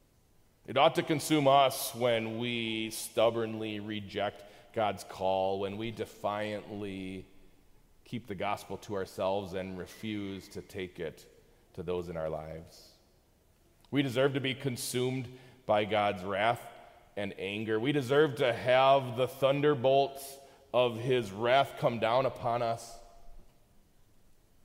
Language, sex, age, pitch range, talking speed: English, male, 30-49, 100-130 Hz, 125 wpm